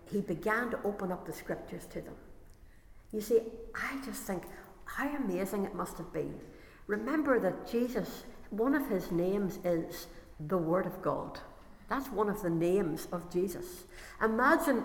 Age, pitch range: 60-79, 185-240 Hz